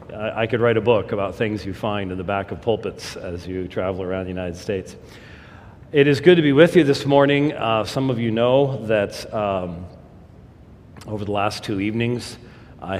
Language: English